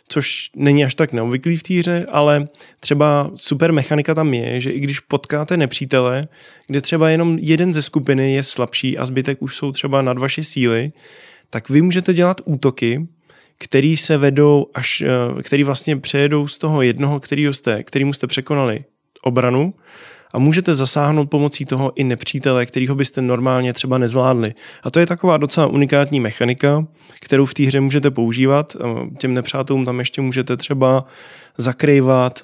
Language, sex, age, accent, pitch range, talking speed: Czech, male, 20-39, native, 125-145 Hz, 160 wpm